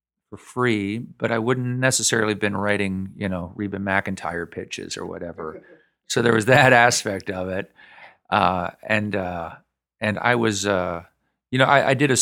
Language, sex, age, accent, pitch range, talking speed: English, male, 40-59, American, 95-115 Hz, 175 wpm